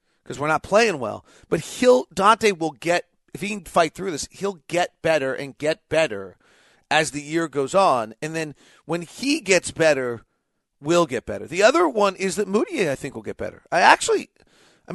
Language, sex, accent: English, male, American